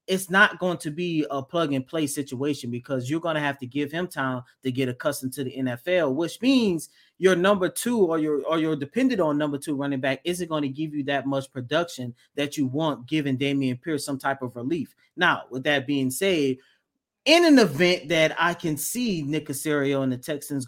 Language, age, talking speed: English, 30-49, 210 wpm